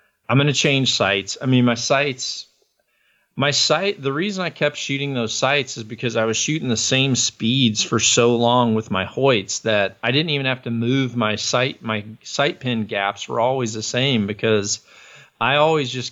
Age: 40-59